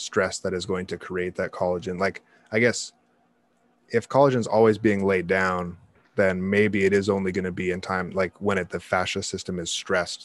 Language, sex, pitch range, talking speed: English, male, 90-100 Hz, 210 wpm